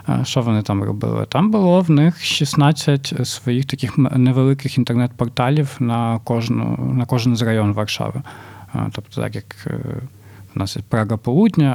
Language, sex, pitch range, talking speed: Ukrainian, male, 105-135 Hz, 140 wpm